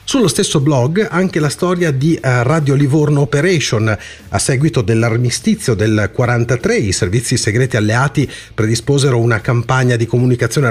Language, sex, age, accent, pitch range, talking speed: Italian, male, 40-59, native, 110-145 Hz, 135 wpm